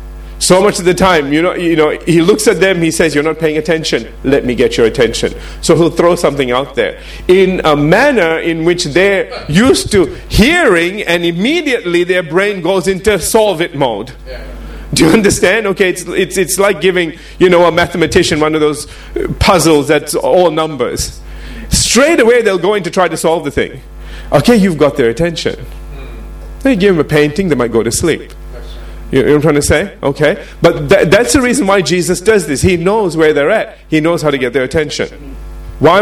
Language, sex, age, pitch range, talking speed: English, male, 40-59, 145-190 Hz, 205 wpm